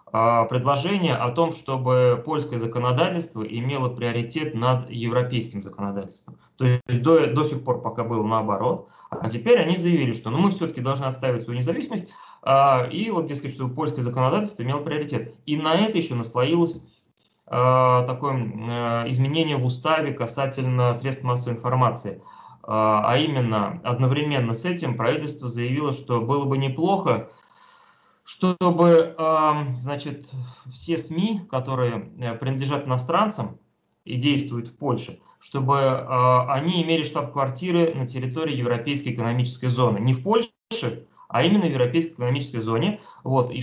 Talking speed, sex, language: 130 wpm, male, Russian